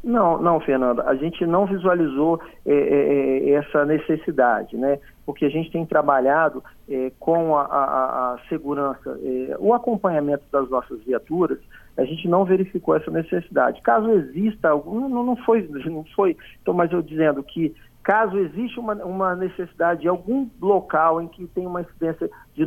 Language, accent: Portuguese, Brazilian